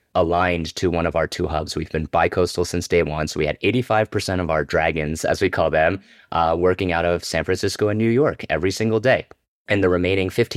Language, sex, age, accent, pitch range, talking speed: English, male, 30-49, American, 85-100 Hz, 220 wpm